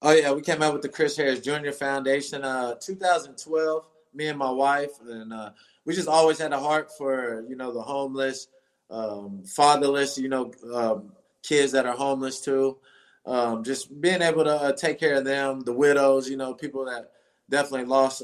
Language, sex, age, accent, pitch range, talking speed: English, male, 20-39, American, 125-145 Hz, 190 wpm